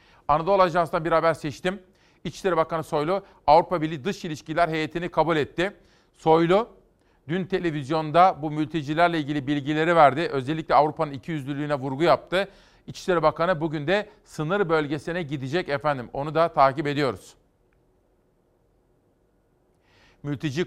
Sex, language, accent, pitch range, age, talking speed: male, Turkish, native, 145-175 Hz, 40-59, 120 wpm